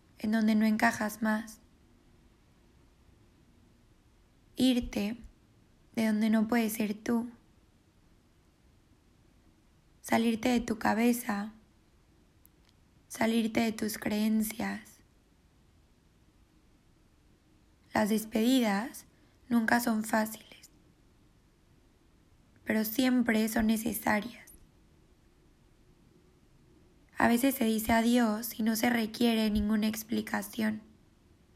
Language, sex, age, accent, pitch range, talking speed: Spanish, female, 20-39, Mexican, 215-235 Hz, 75 wpm